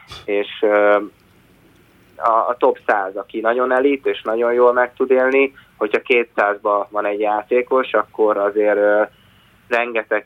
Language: Hungarian